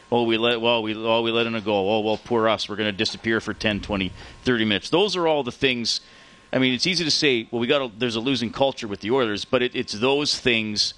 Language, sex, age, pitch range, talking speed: English, male, 40-59, 105-120 Hz, 275 wpm